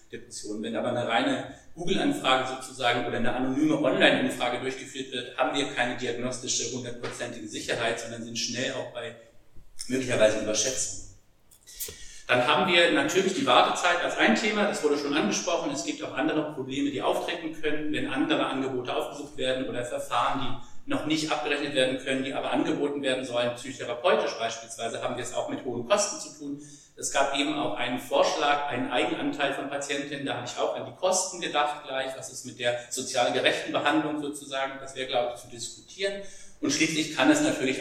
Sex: male